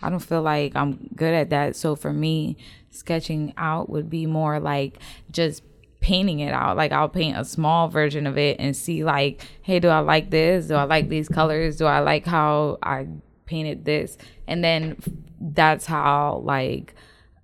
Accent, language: American, English